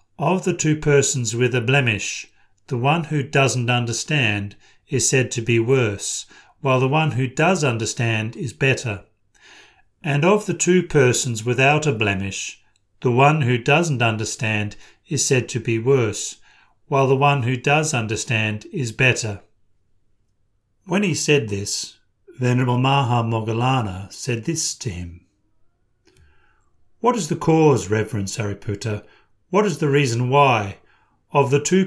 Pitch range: 110-150 Hz